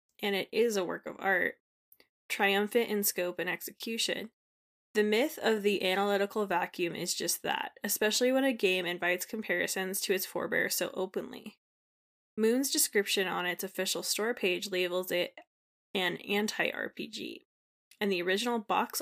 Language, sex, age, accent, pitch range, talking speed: English, female, 10-29, American, 185-220 Hz, 150 wpm